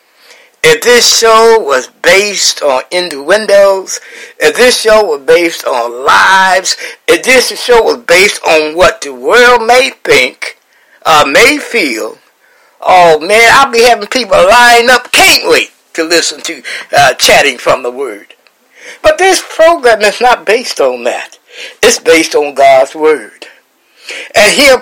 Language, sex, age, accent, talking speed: English, male, 60-79, American, 145 wpm